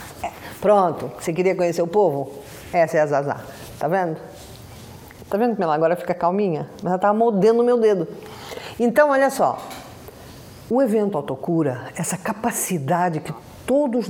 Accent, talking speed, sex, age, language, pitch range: Brazilian, 155 wpm, female, 50-69, Portuguese, 155-205 Hz